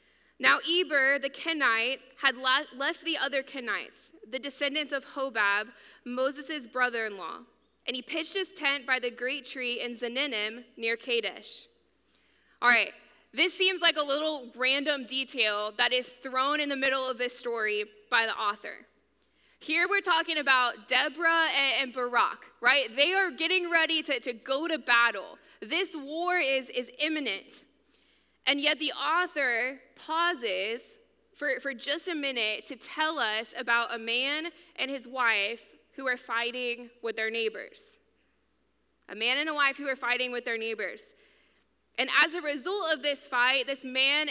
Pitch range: 245-305 Hz